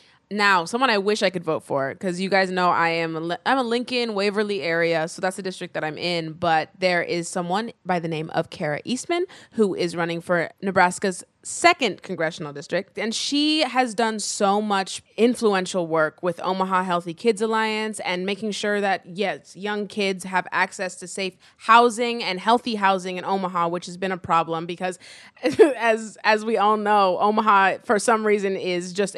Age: 20-39